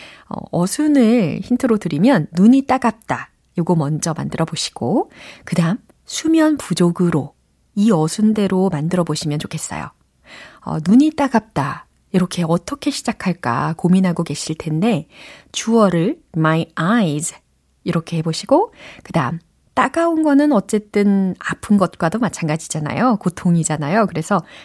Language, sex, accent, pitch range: Korean, female, native, 165-245 Hz